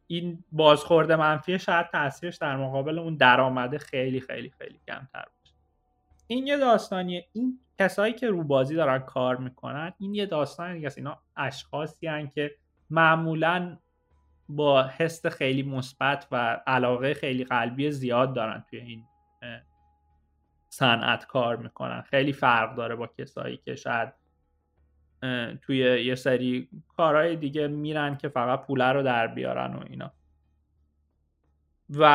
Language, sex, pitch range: Persian, male, 120-160 Hz